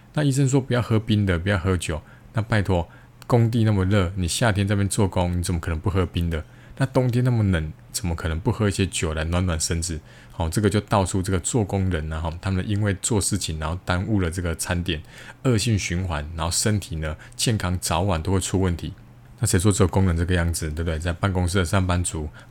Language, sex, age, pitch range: Chinese, male, 20-39, 85-110 Hz